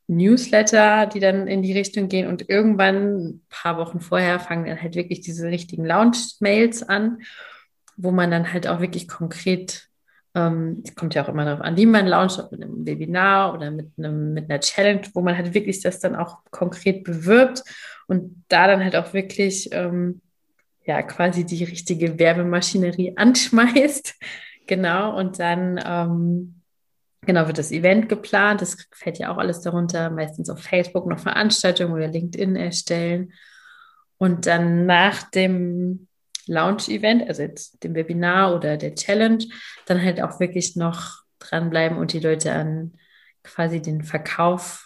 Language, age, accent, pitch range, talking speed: German, 30-49, German, 170-195 Hz, 155 wpm